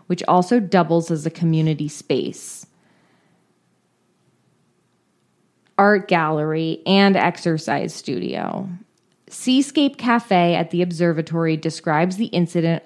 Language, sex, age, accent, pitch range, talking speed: English, female, 20-39, American, 160-195 Hz, 95 wpm